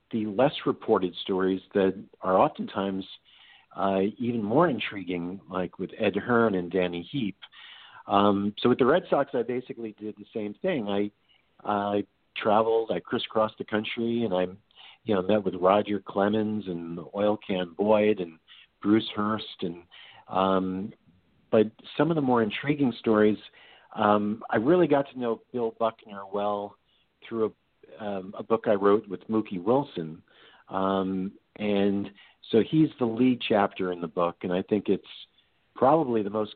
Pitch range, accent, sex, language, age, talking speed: 95-115 Hz, American, male, English, 50-69, 160 wpm